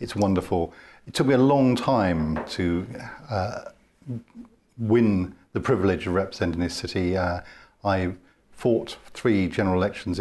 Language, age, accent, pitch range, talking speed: English, 50-69, British, 85-105 Hz, 135 wpm